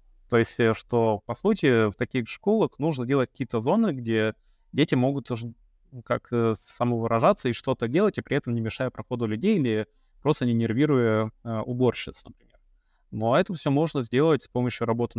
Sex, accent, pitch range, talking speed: male, native, 110-125 Hz, 160 wpm